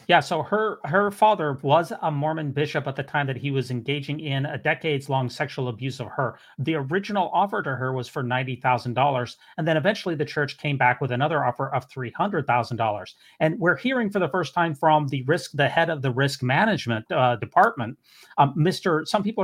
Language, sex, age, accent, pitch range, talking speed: English, male, 30-49, American, 135-185 Hz, 215 wpm